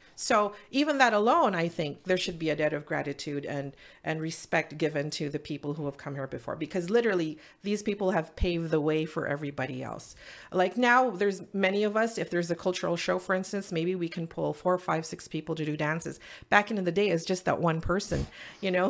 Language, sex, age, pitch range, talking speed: English, female, 40-59, 175-240 Hz, 225 wpm